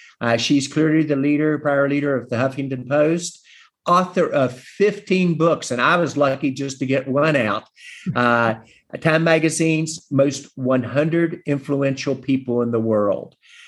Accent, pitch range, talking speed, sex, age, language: American, 125-155 Hz, 150 wpm, male, 50-69, English